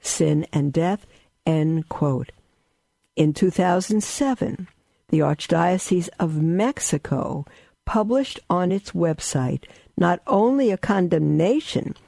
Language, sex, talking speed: English, female, 95 wpm